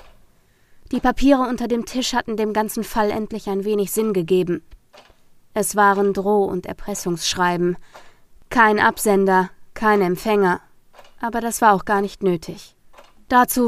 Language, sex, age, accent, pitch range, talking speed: German, female, 20-39, German, 185-220 Hz, 135 wpm